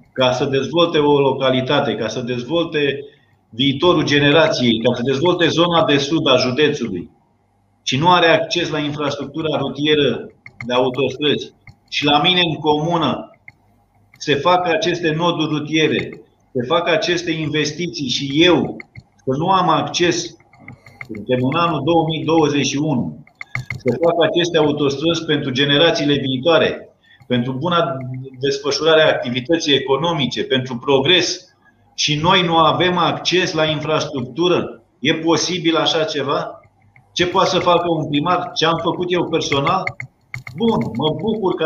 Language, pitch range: Romanian, 125-165 Hz